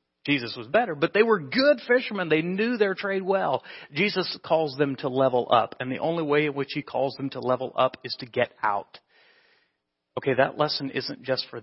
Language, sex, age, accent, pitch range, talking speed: English, male, 40-59, American, 130-160 Hz, 210 wpm